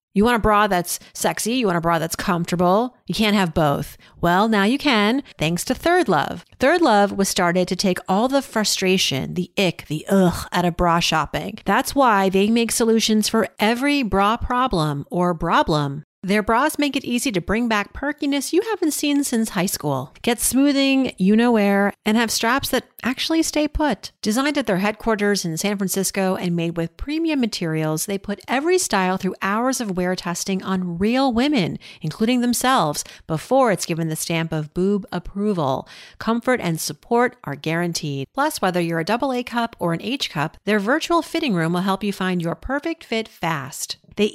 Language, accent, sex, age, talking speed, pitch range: English, American, female, 40-59, 190 wpm, 175-250 Hz